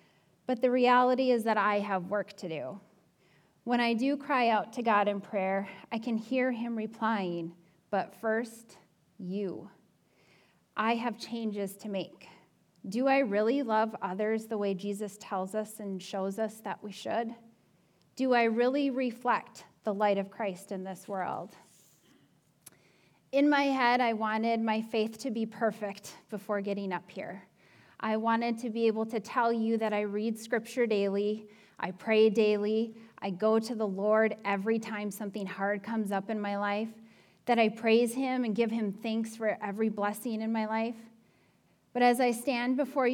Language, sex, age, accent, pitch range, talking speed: English, female, 10-29, American, 195-230 Hz, 170 wpm